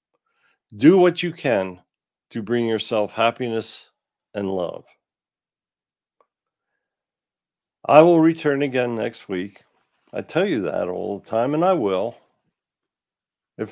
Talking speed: 120 wpm